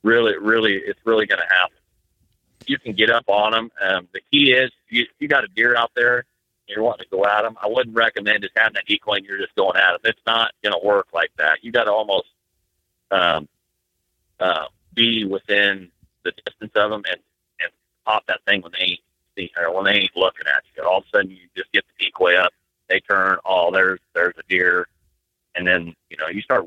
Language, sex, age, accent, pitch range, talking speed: English, male, 40-59, American, 95-115 Hz, 230 wpm